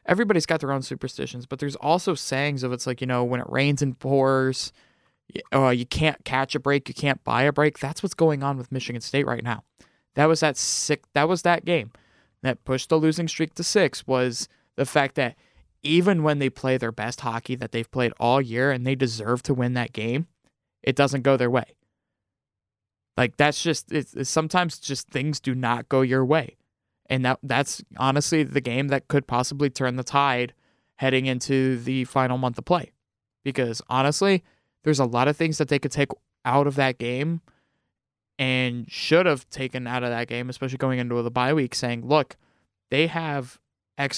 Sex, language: male, English